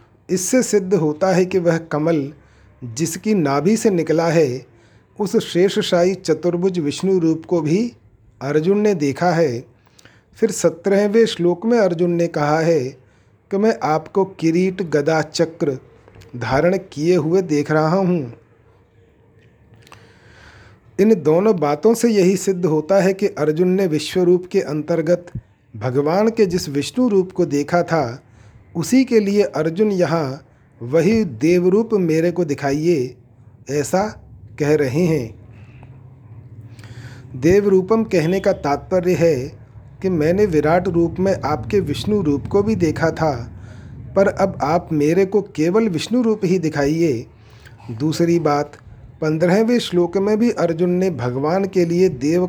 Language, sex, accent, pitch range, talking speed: Hindi, male, native, 125-185 Hz, 135 wpm